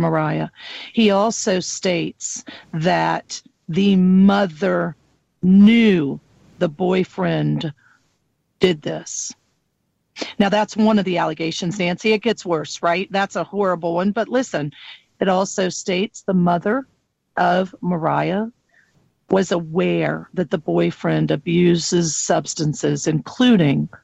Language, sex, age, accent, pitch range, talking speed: English, female, 40-59, American, 170-210 Hz, 110 wpm